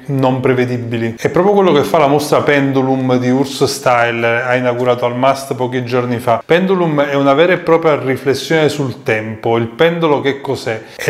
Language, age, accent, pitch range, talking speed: Italian, 20-39, native, 125-145 Hz, 185 wpm